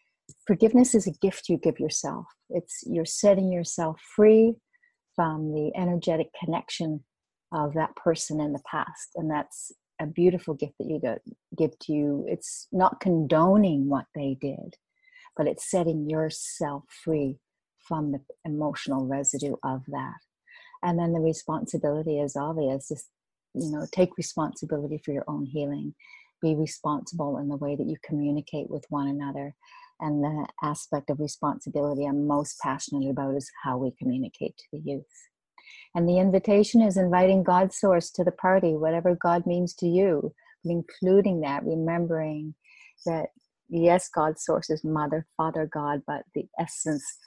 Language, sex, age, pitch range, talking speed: English, female, 40-59, 145-175 Hz, 150 wpm